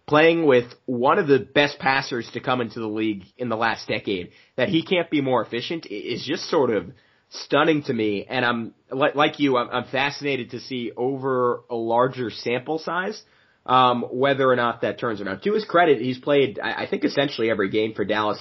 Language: English